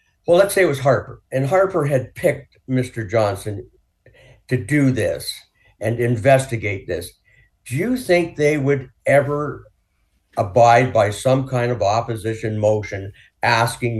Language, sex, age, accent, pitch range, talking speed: English, male, 50-69, American, 110-150 Hz, 135 wpm